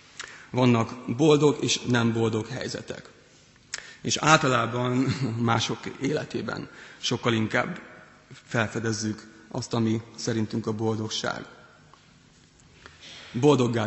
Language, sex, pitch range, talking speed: Hungarian, male, 115-130 Hz, 80 wpm